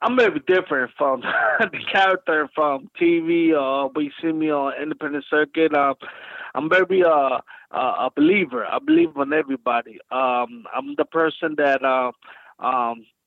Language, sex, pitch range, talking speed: English, male, 135-160 Hz, 155 wpm